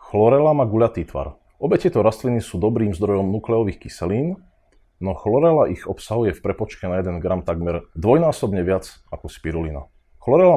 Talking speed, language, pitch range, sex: 155 wpm, Slovak, 95-120 Hz, male